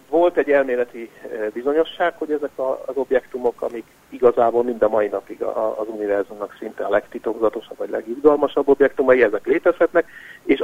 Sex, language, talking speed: male, Hungarian, 140 wpm